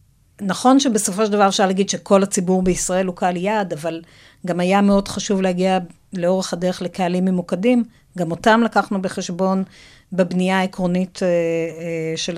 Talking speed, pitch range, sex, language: 140 wpm, 175-220 Hz, female, Hebrew